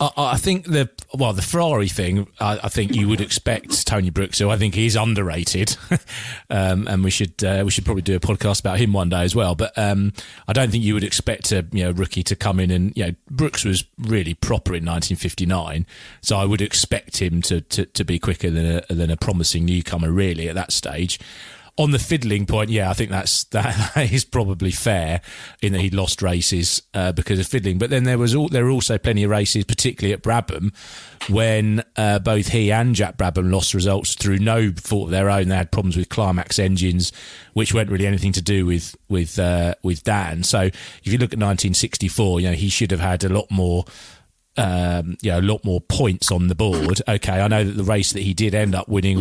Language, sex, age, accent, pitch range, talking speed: English, male, 30-49, British, 90-110 Hz, 230 wpm